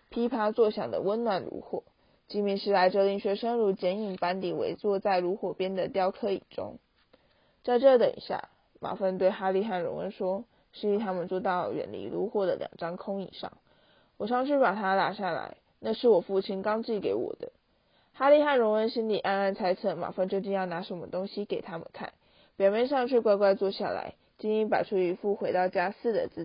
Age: 20-39